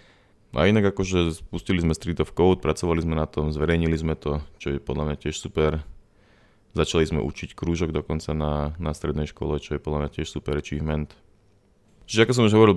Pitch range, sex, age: 75-90 Hz, male, 20-39